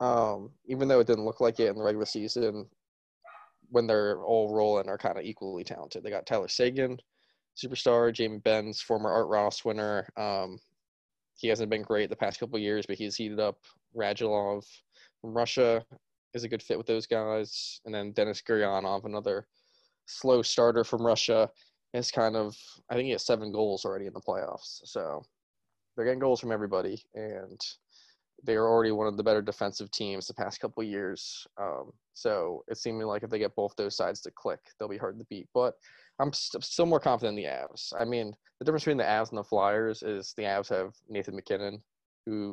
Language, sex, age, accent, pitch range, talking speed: English, male, 20-39, American, 100-115 Hz, 200 wpm